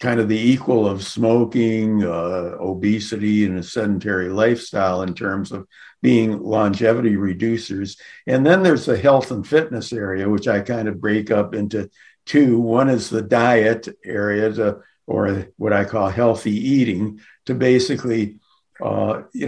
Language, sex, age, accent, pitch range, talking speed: English, male, 60-79, American, 105-130 Hz, 155 wpm